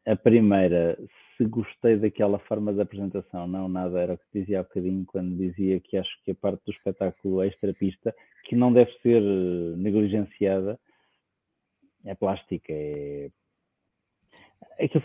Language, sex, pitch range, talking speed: English, male, 95-115 Hz, 145 wpm